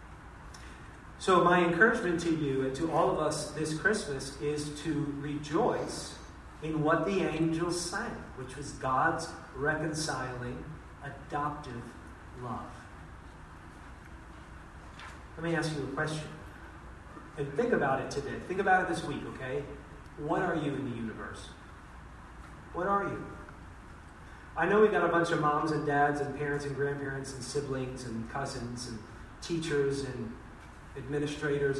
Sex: male